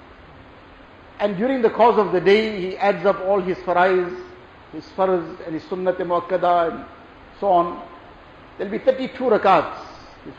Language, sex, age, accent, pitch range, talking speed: English, male, 50-69, Indian, 180-220 Hz, 150 wpm